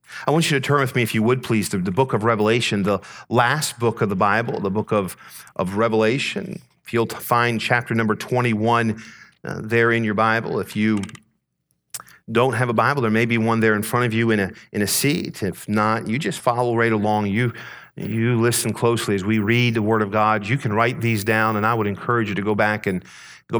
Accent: American